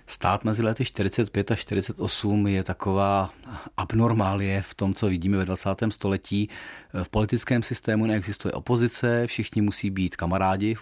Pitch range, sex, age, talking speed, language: 95-110 Hz, male, 40-59, 145 wpm, Czech